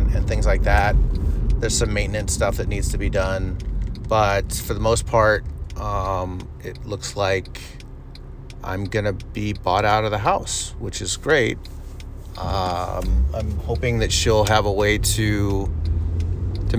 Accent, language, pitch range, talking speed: American, English, 90-110 Hz, 155 wpm